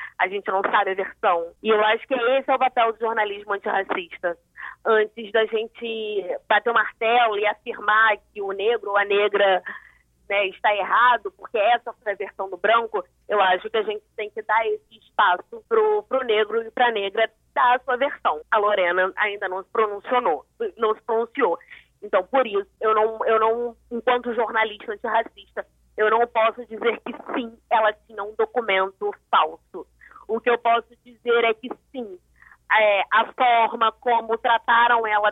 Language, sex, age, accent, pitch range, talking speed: Portuguese, female, 20-39, Brazilian, 210-250 Hz, 170 wpm